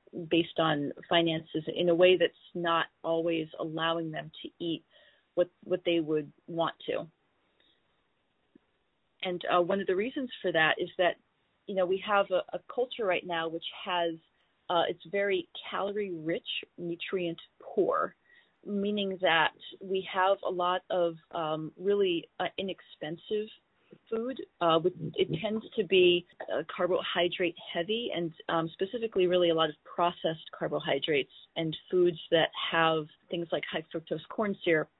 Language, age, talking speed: English, 30-49, 145 wpm